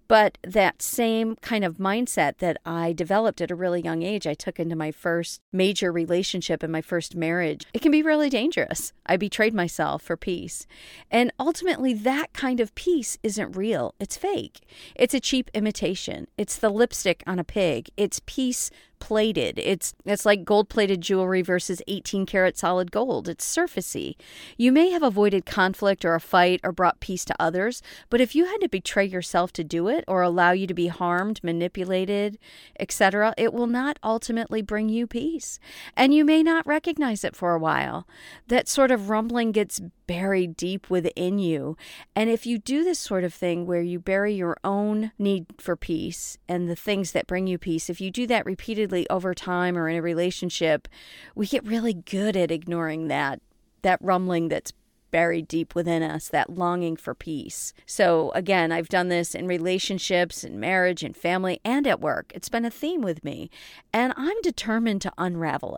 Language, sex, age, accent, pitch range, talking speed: English, female, 40-59, American, 175-225 Hz, 185 wpm